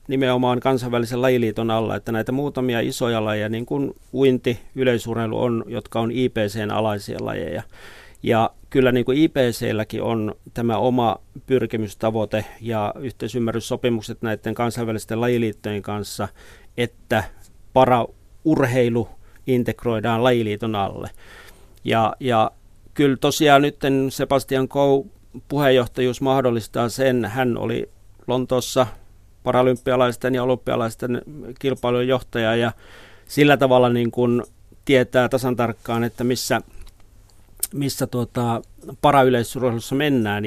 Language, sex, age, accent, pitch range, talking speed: Finnish, male, 40-59, native, 110-130 Hz, 100 wpm